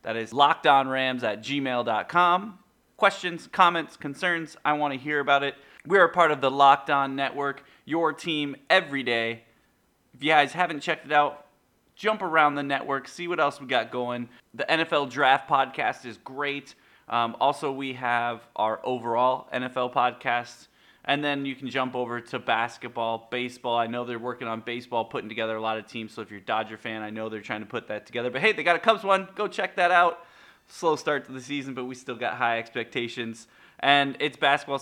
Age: 30-49